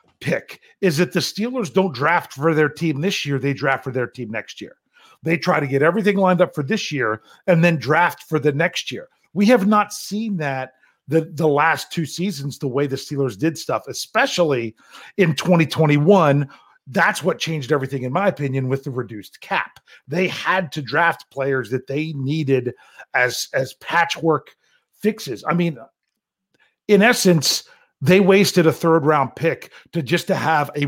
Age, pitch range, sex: 40-59, 135-175 Hz, male